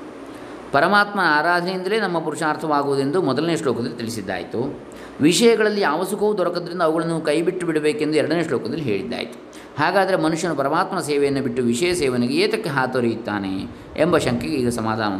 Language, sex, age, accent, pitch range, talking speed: Kannada, male, 20-39, native, 120-175 Hz, 115 wpm